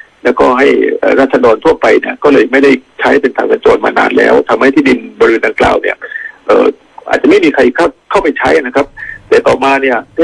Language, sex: Thai, male